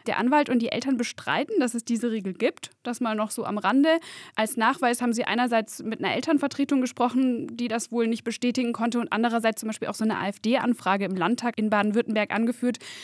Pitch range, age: 210-255 Hz, 10-29